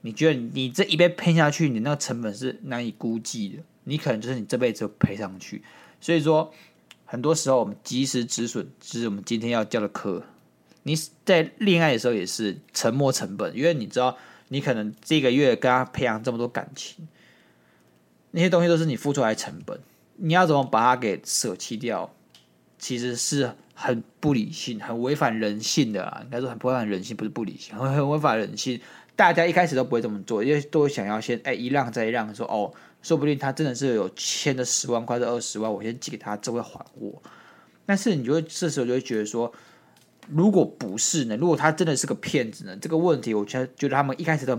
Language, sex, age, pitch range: Chinese, male, 20-39, 110-155 Hz